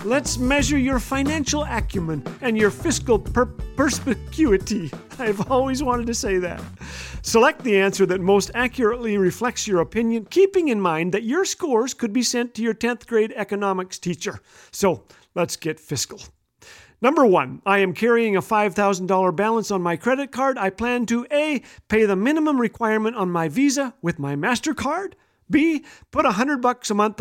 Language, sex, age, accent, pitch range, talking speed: English, male, 40-59, American, 190-250 Hz, 170 wpm